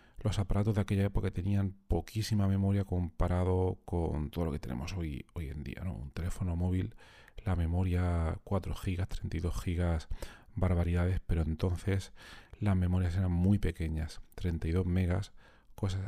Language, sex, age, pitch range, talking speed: Spanish, male, 40-59, 90-105 Hz, 145 wpm